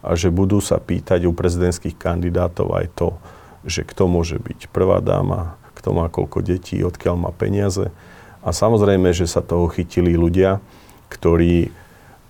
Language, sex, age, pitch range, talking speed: Slovak, male, 40-59, 85-95 Hz, 150 wpm